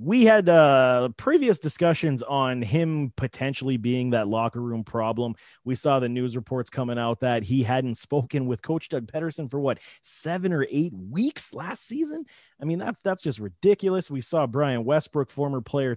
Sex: male